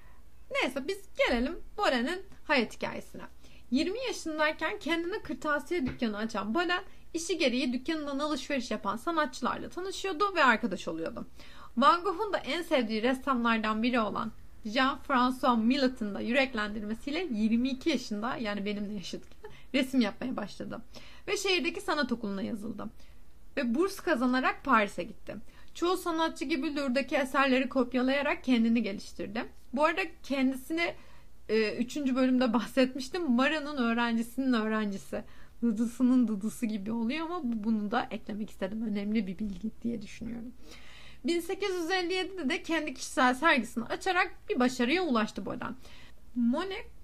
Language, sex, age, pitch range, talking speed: Turkish, female, 30-49, 225-320 Hz, 125 wpm